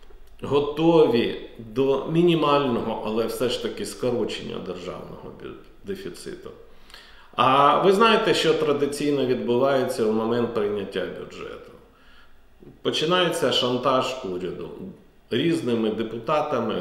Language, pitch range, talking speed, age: Ukrainian, 120-165 Hz, 90 wpm, 40-59